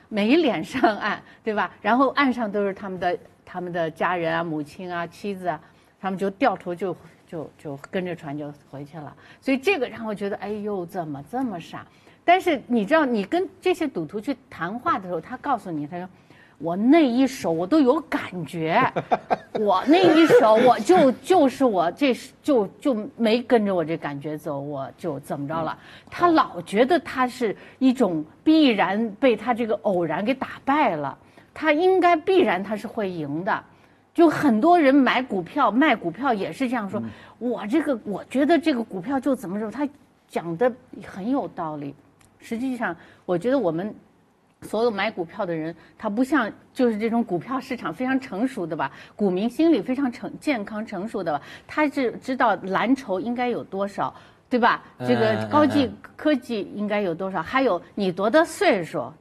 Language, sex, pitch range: Chinese, female, 175-270 Hz